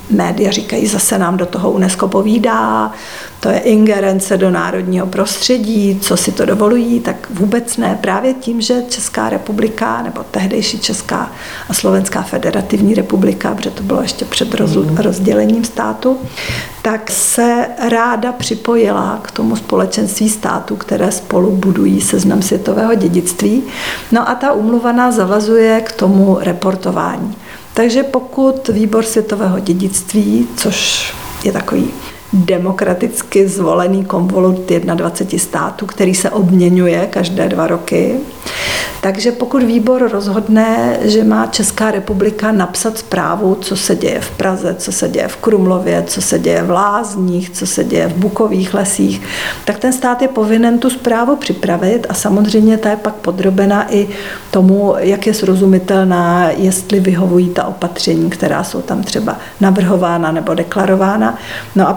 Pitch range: 185-225 Hz